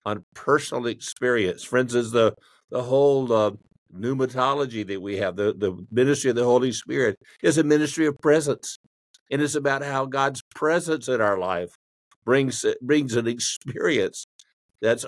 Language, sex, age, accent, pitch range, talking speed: English, male, 50-69, American, 115-140 Hz, 155 wpm